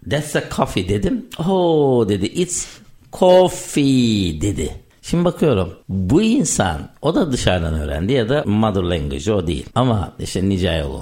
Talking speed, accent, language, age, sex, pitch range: 140 wpm, native, Turkish, 60-79, male, 90-130 Hz